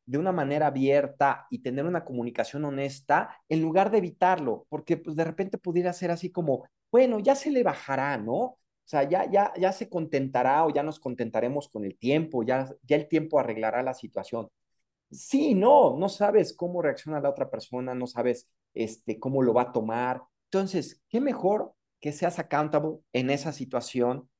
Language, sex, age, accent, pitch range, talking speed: Spanish, male, 40-59, Mexican, 130-175 Hz, 180 wpm